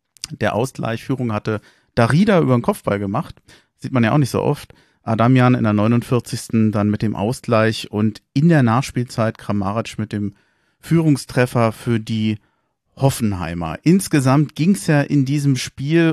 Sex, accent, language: male, German, German